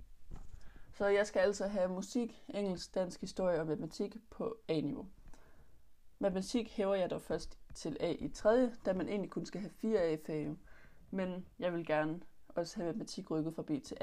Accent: native